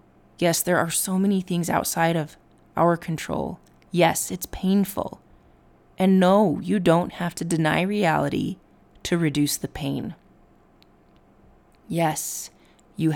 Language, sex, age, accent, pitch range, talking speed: English, female, 20-39, American, 150-180 Hz, 125 wpm